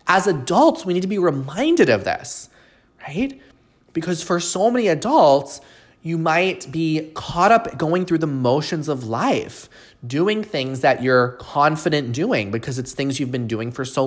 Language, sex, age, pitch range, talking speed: English, male, 20-39, 120-170 Hz, 170 wpm